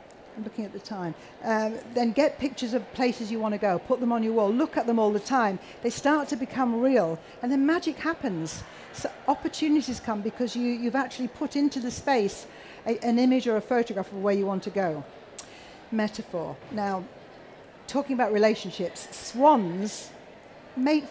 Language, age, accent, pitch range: English, 50-69, British, 210-265 Hz